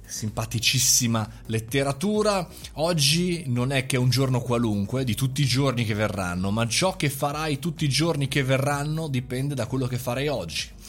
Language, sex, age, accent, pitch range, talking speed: Italian, male, 30-49, native, 105-145 Hz, 165 wpm